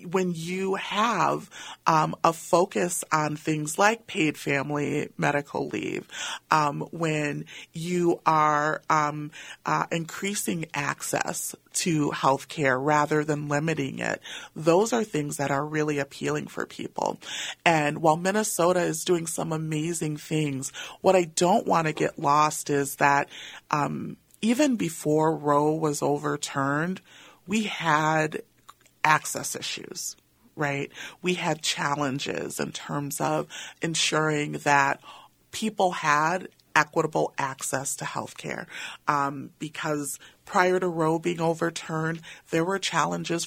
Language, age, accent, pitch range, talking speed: English, 40-59, American, 145-170 Hz, 125 wpm